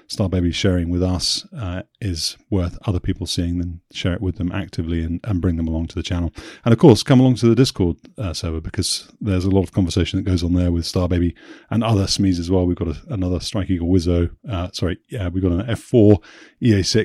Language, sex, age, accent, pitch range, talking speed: English, male, 30-49, British, 90-105 Hz, 240 wpm